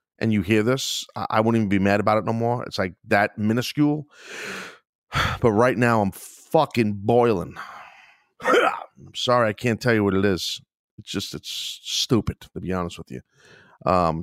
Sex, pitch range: male, 100-130 Hz